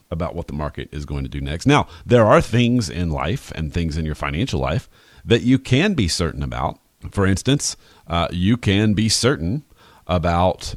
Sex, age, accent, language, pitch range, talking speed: male, 40-59, American, English, 85-110 Hz, 195 wpm